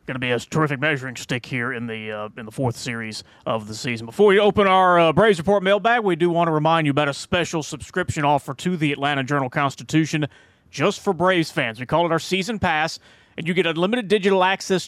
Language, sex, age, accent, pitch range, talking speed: English, male, 30-49, American, 130-185 Hz, 230 wpm